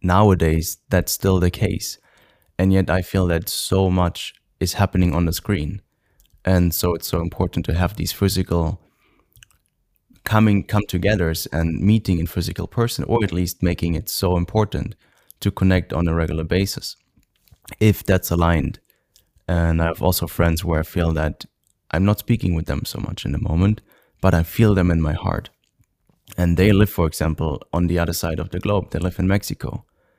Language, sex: English, male